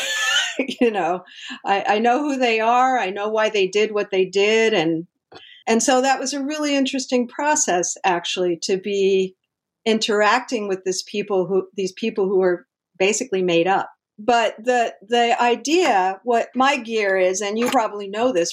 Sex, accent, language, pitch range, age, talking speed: female, American, English, 190-240 Hz, 50-69, 170 wpm